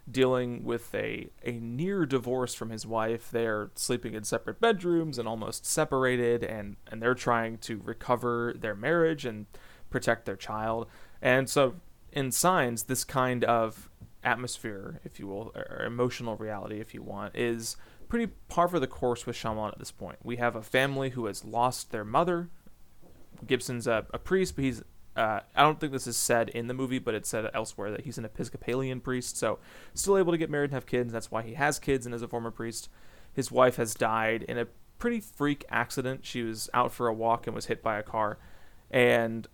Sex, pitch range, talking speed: male, 115-130 Hz, 200 wpm